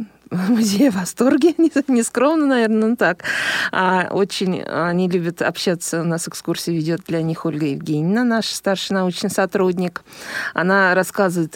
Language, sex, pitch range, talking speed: Russian, female, 180-225 Hz, 155 wpm